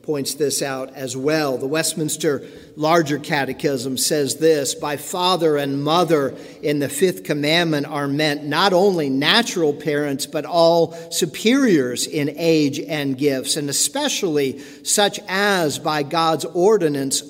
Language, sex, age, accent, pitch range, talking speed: English, male, 50-69, American, 140-170 Hz, 135 wpm